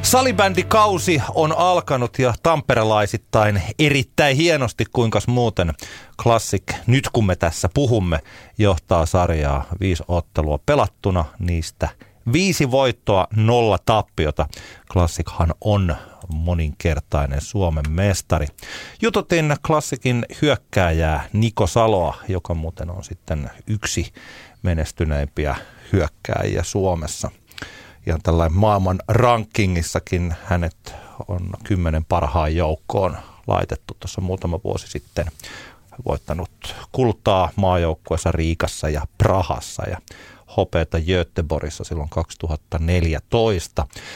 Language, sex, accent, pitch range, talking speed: Finnish, male, native, 85-115 Hz, 90 wpm